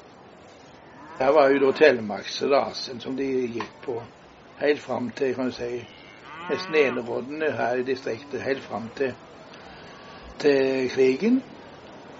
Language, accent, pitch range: English, Swedish, 125-150 Hz